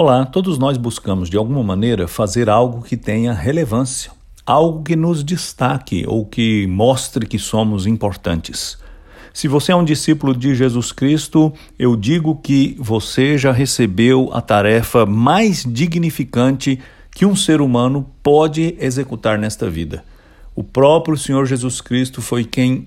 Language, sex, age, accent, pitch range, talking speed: English, male, 60-79, Brazilian, 115-155 Hz, 145 wpm